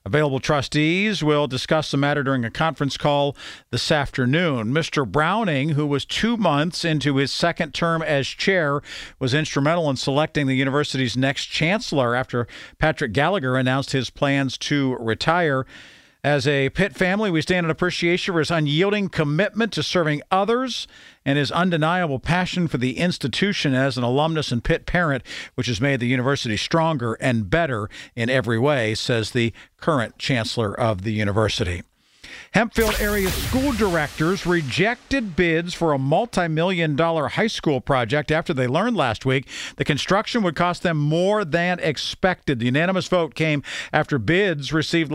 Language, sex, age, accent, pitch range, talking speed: English, male, 50-69, American, 135-175 Hz, 160 wpm